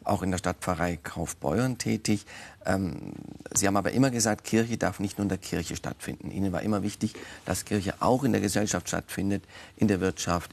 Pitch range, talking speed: 95-115 Hz, 195 wpm